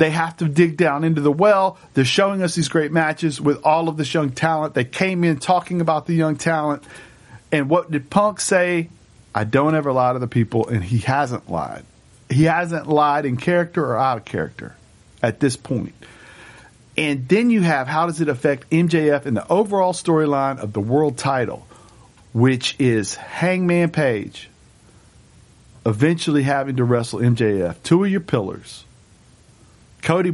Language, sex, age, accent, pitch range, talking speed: English, male, 50-69, American, 115-155 Hz, 170 wpm